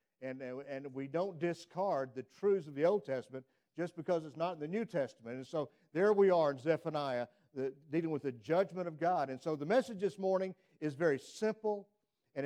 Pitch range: 135-180 Hz